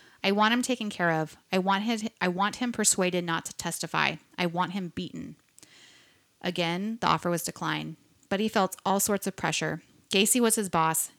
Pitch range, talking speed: 175-205 Hz, 195 wpm